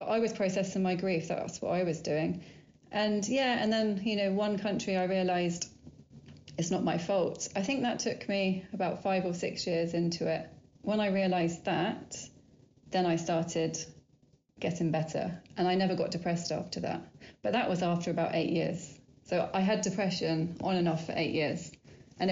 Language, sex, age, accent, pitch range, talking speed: English, female, 30-49, British, 170-195 Hz, 190 wpm